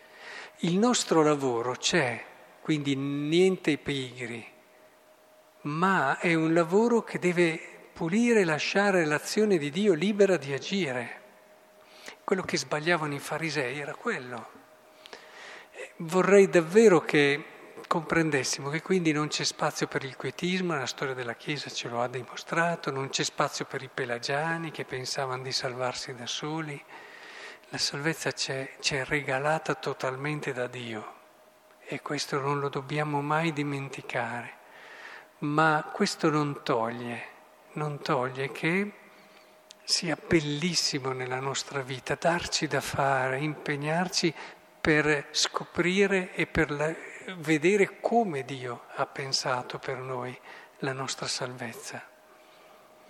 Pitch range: 135-170 Hz